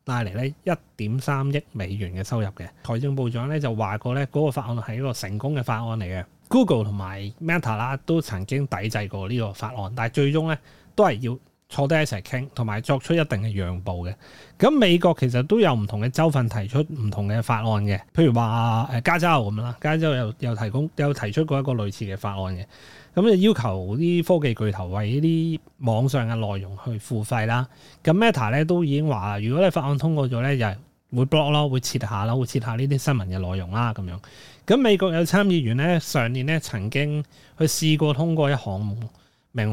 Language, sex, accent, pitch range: Chinese, male, native, 110-150 Hz